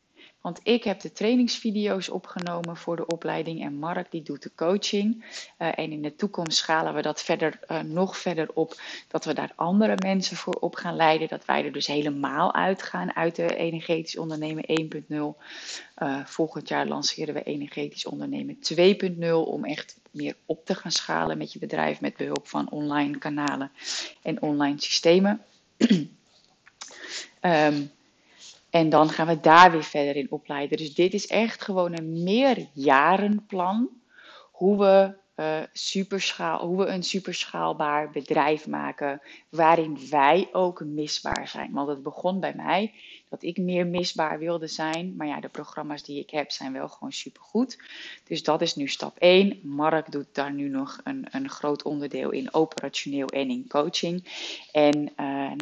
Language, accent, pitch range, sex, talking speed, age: Dutch, Dutch, 145-185 Hz, female, 160 wpm, 30-49